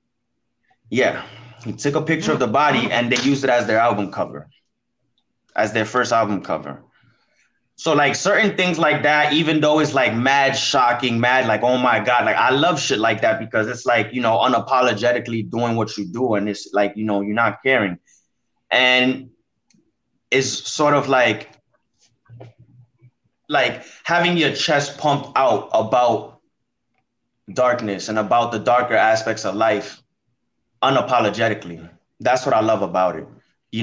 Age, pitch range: 20-39, 115-140 Hz